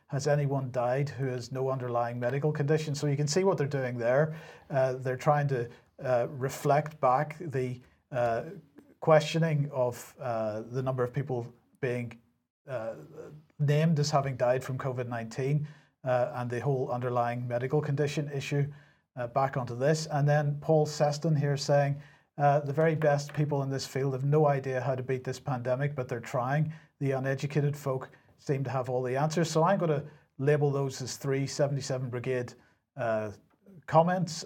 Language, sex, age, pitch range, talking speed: English, male, 40-59, 125-150 Hz, 170 wpm